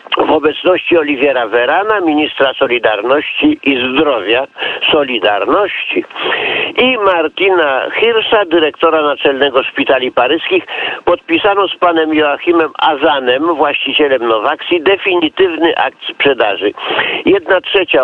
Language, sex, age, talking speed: Polish, male, 50-69, 95 wpm